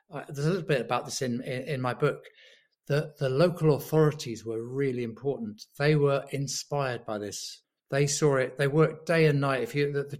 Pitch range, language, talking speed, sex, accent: 120-150 Hz, English, 210 wpm, male, British